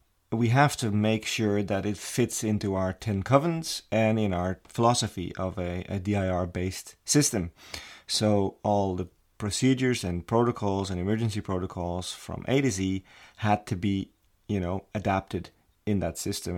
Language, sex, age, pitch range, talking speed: English, male, 30-49, 95-105 Hz, 160 wpm